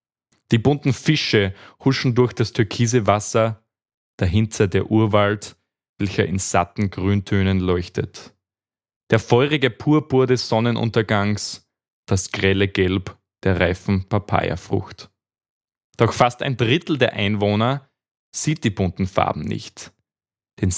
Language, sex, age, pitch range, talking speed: German, male, 20-39, 95-115 Hz, 115 wpm